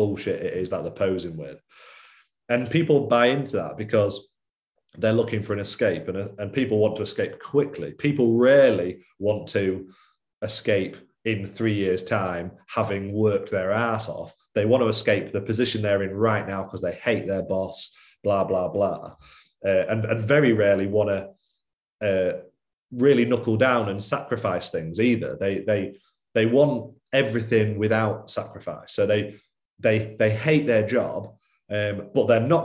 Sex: male